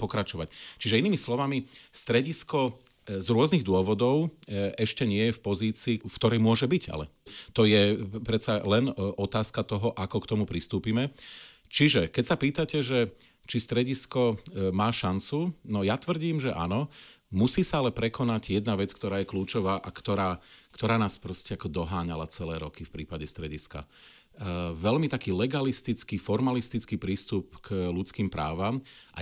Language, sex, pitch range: Slovak, male, 95-120 Hz